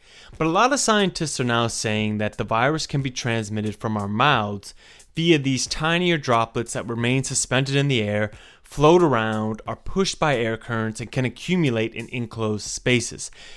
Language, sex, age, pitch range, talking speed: English, male, 30-49, 110-150 Hz, 175 wpm